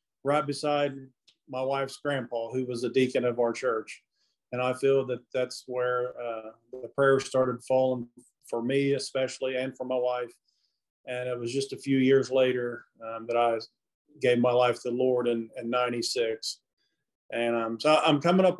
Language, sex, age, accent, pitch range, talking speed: English, male, 40-59, American, 125-145 Hz, 180 wpm